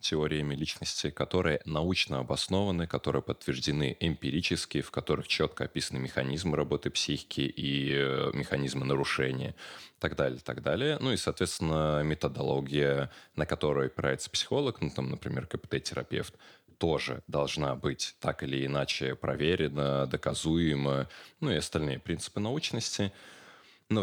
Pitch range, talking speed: 70-90 Hz, 120 wpm